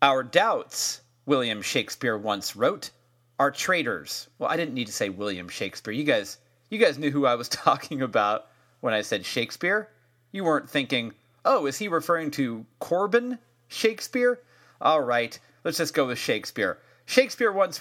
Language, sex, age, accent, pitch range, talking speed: English, male, 30-49, American, 120-170 Hz, 165 wpm